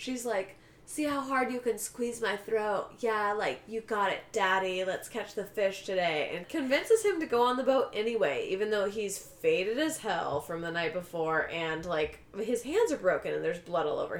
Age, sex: 20-39, female